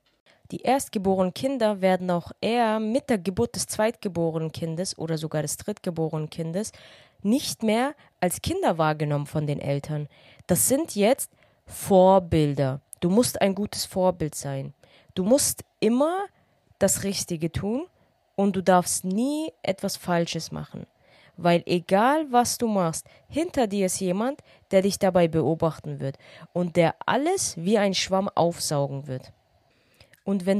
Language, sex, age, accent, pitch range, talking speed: German, female, 20-39, German, 165-240 Hz, 140 wpm